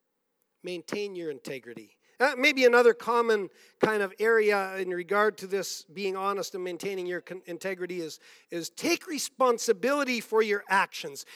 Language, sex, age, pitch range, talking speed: English, male, 50-69, 195-265 Hz, 145 wpm